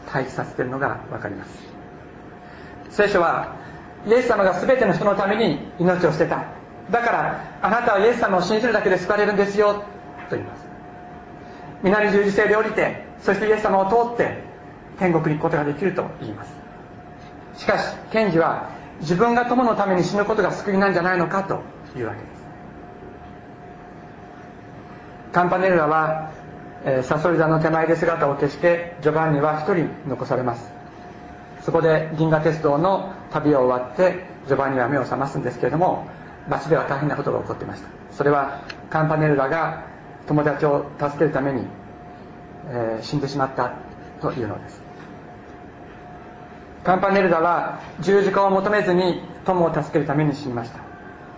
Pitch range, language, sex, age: 150-195 Hz, Japanese, male, 40-59